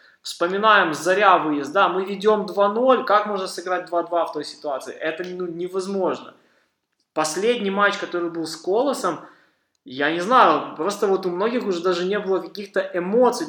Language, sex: Russian, male